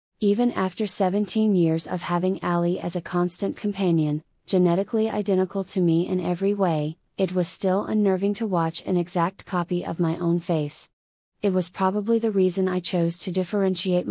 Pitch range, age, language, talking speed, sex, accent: 175-200 Hz, 30-49, English, 170 wpm, female, American